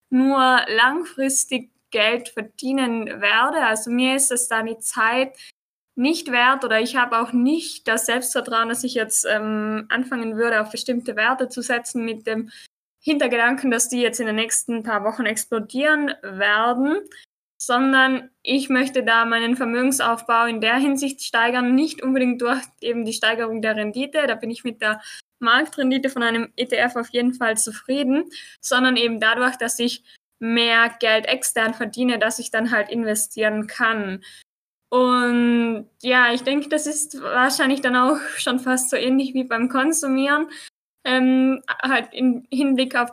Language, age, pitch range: German, 10-29, 230-260 Hz